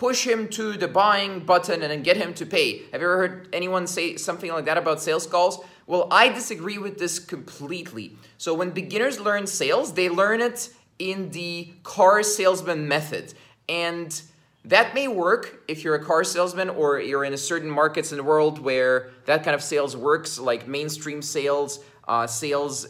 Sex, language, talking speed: male, English, 190 wpm